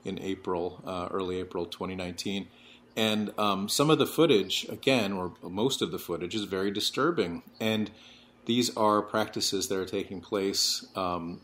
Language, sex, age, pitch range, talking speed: English, male, 30-49, 95-110 Hz, 155 wpm